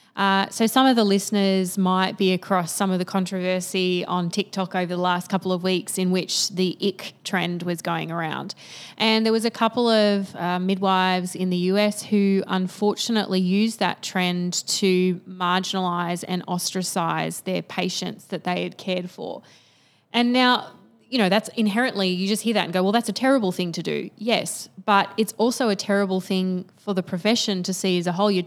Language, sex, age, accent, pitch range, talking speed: English, female, 20-39, Australian, 180-205 Hz, 190 wpm